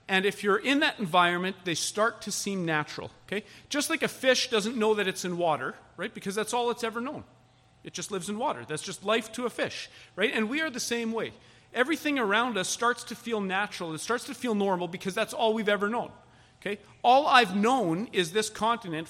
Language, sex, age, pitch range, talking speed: English, male, 40-59, 170-230 Hz, 225 wpm